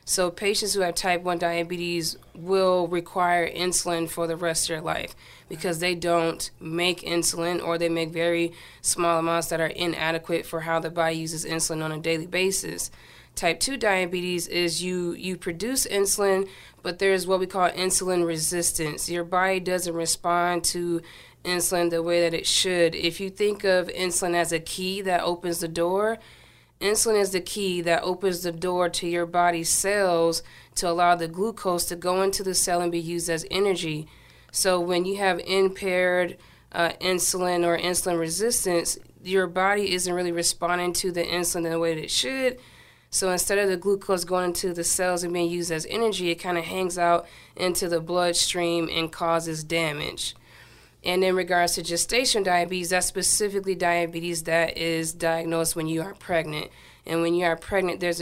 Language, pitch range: English, 165-185 Hz